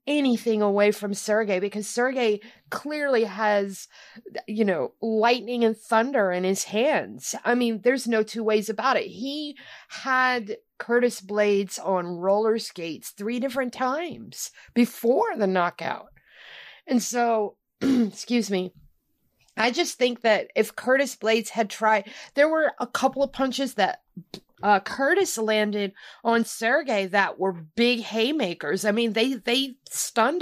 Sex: female